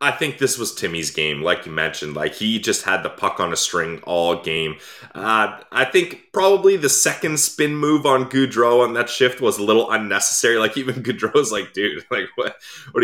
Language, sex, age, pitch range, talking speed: English, male, 20-39, 100-130 Hz, 205 wpm